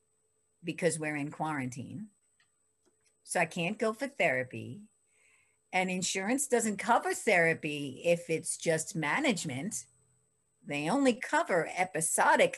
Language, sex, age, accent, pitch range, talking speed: English, female, 50-69, American, 165-230 Hz, 110 wpm